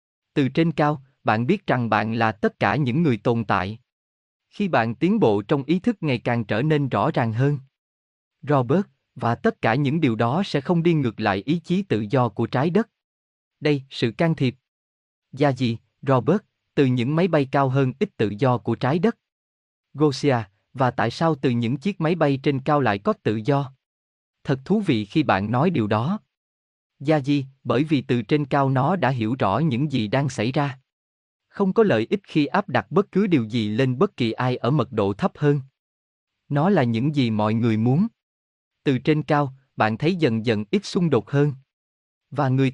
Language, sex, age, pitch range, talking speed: Vietnamese, male, 20-39, 110-155 Hz, 205 wpm